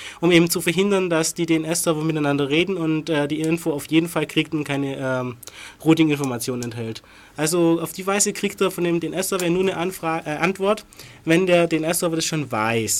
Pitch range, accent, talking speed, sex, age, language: 135-175 Hz, German, 195 wpm, male, 30-49, German